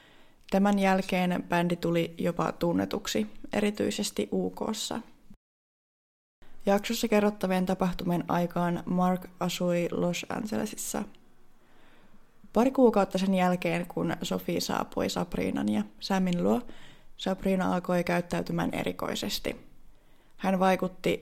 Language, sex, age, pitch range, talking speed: Finnish, female, 20-39, 175-210 Hz, 95 wpm